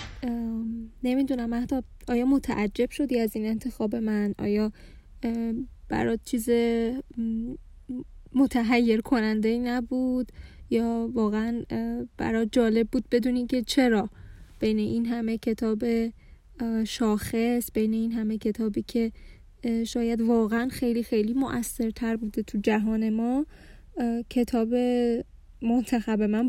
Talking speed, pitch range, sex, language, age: 105 wpm, 220-255 Hz, female, Persian, 10-29